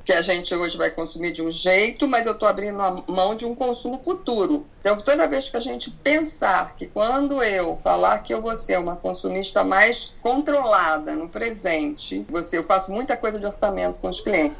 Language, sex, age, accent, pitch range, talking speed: Portuguese, female, 50-69, Brazilian, 175-255 Hz, 200 wpm